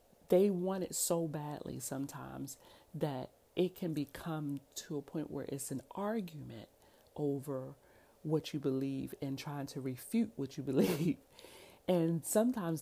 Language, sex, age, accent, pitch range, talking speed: English, female, 40-59, American, 135-165 Hz, 140 wpm